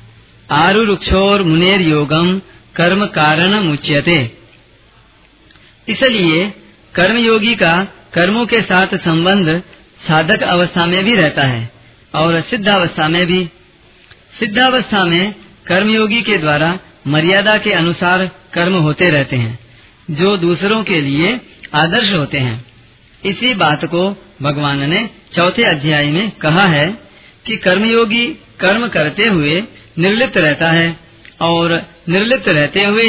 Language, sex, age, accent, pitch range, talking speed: Hindi, female, 40-59, native, 155-200 Hz, 115 wpm